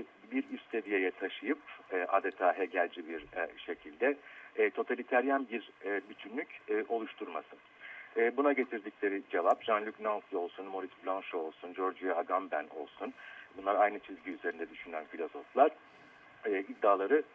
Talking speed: 120 wpm